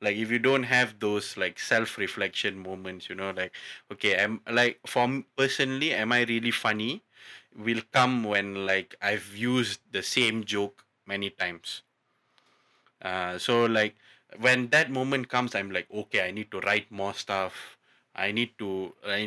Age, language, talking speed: 20-39, English, 170 wpm